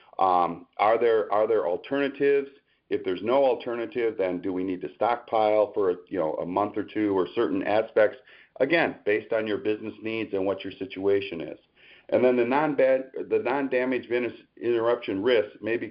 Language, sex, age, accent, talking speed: English, male, 50-69, American, 175 wpm